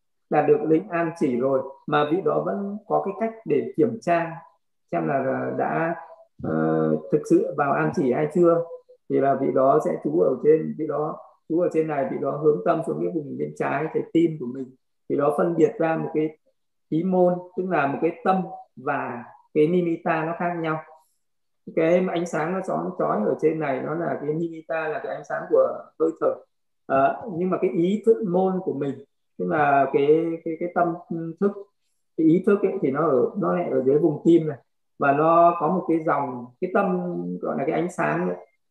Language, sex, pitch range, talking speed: Vietnamese, male, 155-185 Hz, 215 wpm